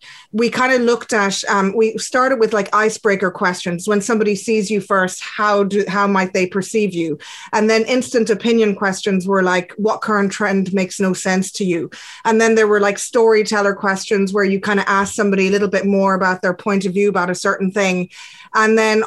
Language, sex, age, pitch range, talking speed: English, female, 20-39, 200-235 Hz, 210 wpm